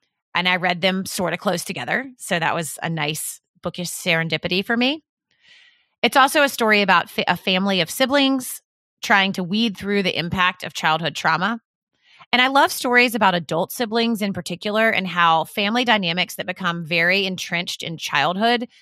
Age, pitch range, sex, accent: 30-49, 170-225 Hz, female, American